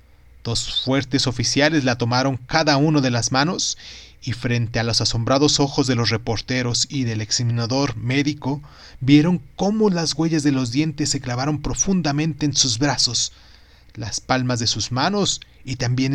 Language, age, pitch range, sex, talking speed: Spanish, 30-49, 115-140 Hz, male, 160 wpm